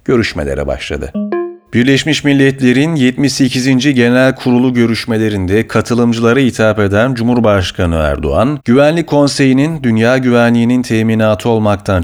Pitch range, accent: 100-130 Hz, native